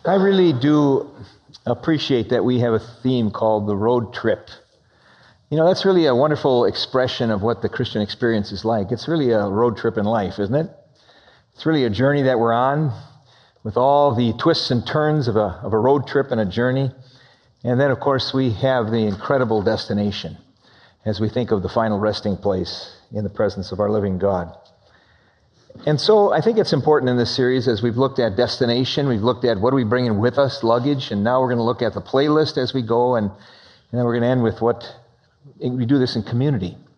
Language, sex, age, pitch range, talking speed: English, male, 50-69, 110-140 Hz, 215 wpm